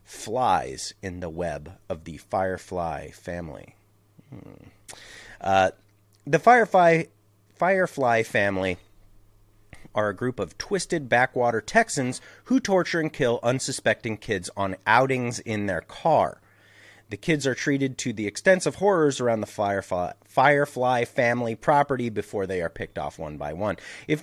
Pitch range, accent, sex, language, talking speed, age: 100-155 Hz, American, male, English, 135 wpm, 30-49